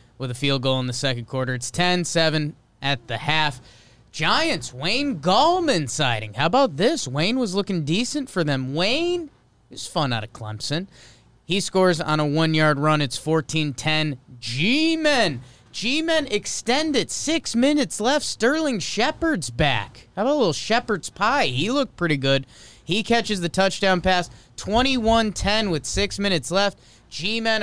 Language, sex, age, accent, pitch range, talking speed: English, male, 30-49, American, 130-180 Hz, 155 wpm